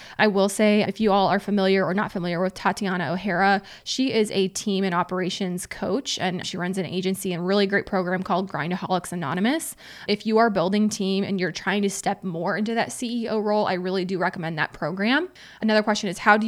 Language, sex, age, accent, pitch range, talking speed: English, female, 20-39, American, 185-215 Hz, 215 wpm